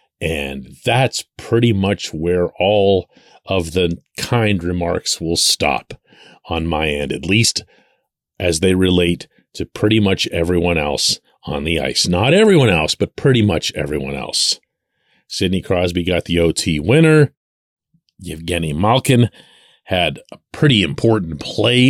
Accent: American